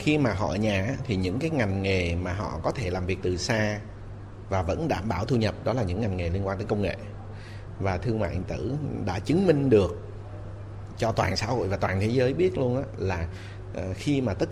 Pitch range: 95-120 Hz